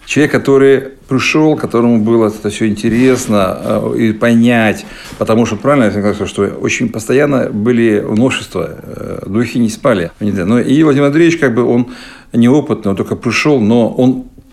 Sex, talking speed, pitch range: male, 150 wpm, 105-130 Hz